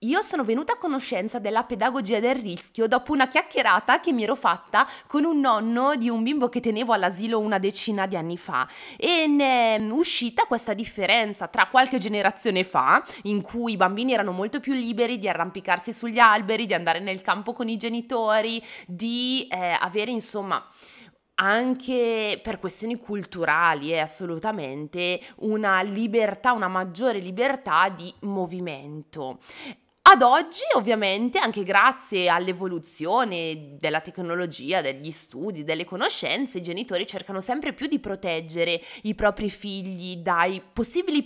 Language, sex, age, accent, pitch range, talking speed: Italian, female, 20-39, native, 180-240 Hz, 145 wpm